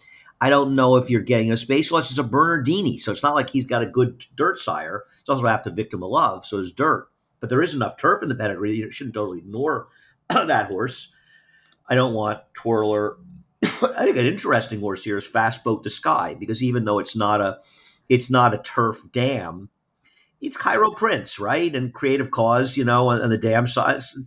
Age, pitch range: 50-69, 110-135 Hz